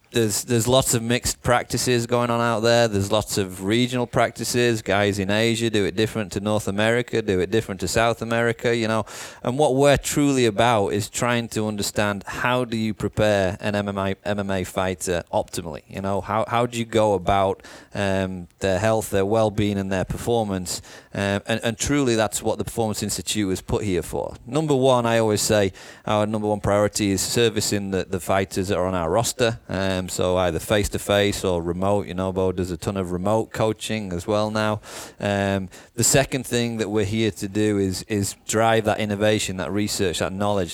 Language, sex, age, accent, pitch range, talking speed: English, male, 30-49, British, 95-115 Hz, 195 wpm